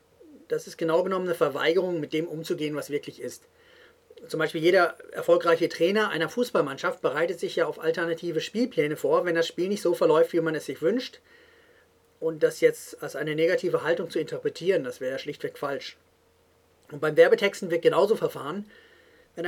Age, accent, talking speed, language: 40-59, German, 180 wpm, English